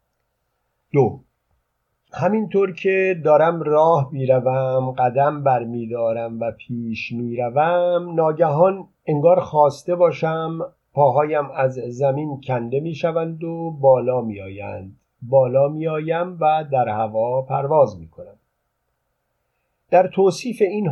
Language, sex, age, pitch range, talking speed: Persian, male, 50-69, 125-155 Hz, 100 wpm